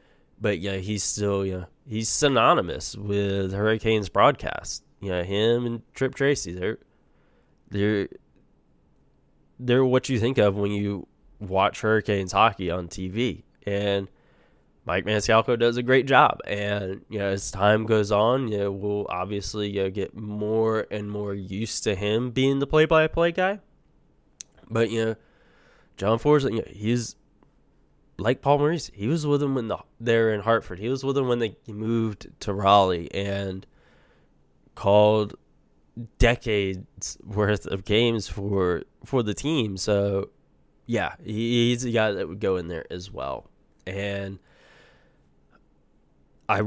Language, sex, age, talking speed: English, male, 10-29, 150 wpm